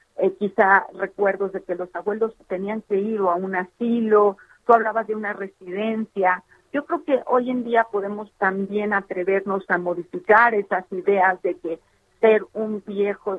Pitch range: 185-220 Hz